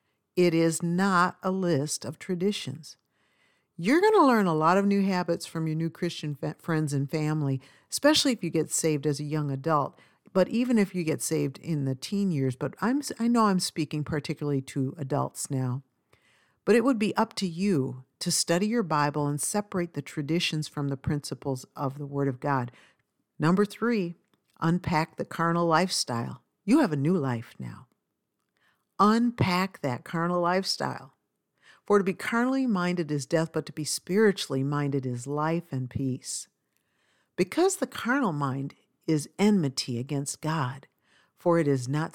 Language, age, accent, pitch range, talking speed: English, 50-69, American, 140-185 Hz, 170 wpm